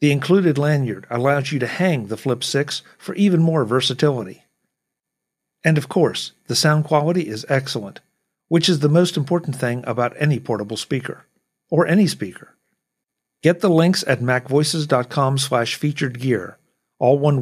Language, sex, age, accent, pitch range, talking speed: English, male, 50-69, American, 115-150 Hz, 150 wpm